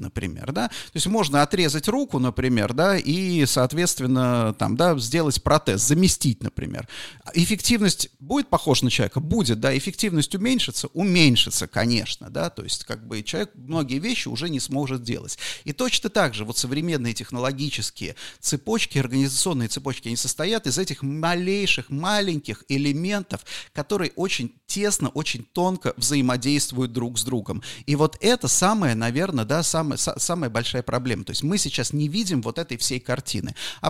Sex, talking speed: male, 155 wpm